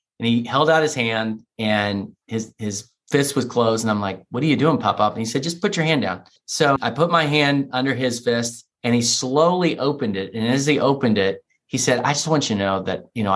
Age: 30-49